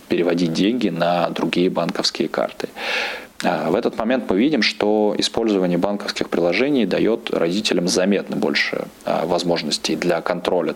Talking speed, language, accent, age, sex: 125 wpm, Russian, native, 20-39, male